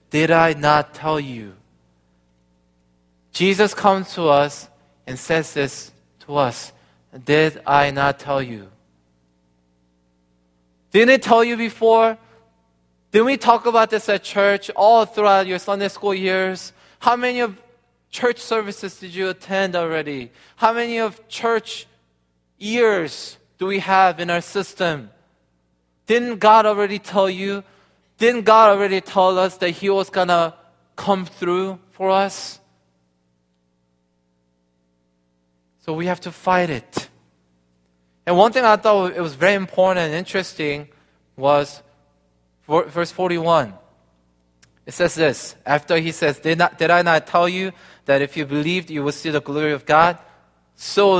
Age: 20-39